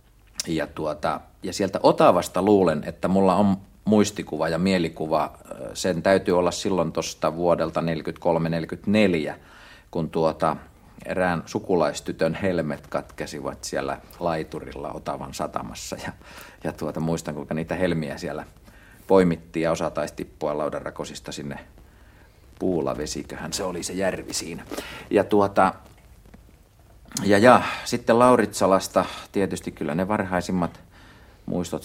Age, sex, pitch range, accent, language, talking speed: 50-69, male, 80-100 Hz, native, Finnish, 110 wpm